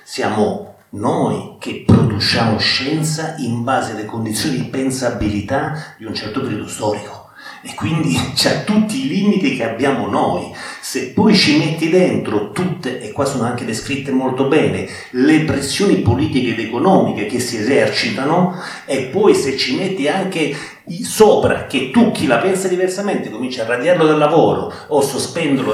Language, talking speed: Italian, 155 wpm